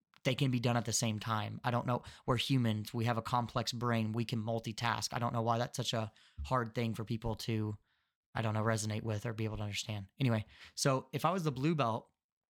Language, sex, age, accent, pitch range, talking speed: English, male, 20-39, American, 110-130 Hz, 245 wpm